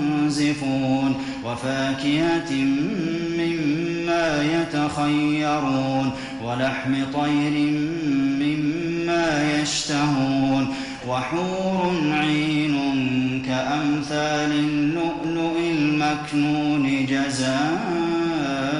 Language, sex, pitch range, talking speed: Arabic, male, 140-155 Hz, 40 wpm